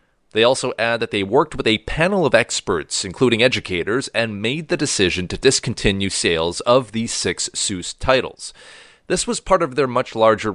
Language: English